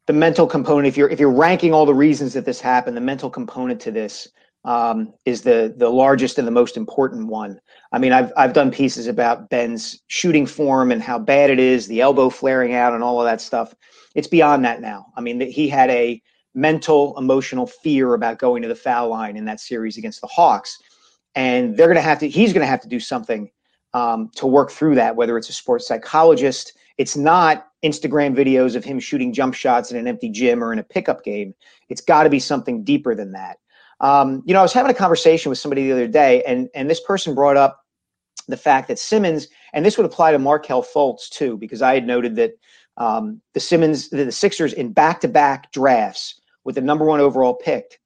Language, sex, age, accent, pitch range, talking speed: English, male, 40-59, American, 130-215 Hz, 220 wpm